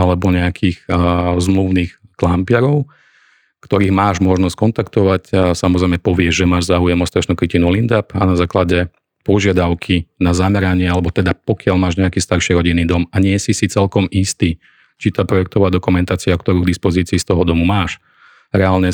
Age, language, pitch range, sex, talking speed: 40-59, Slovak, 90-95 Hz, male, 160 wpm